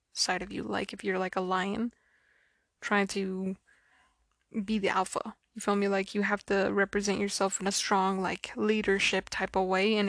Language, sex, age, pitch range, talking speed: English, female, 20-39, 195-230 Hz, 190 wpm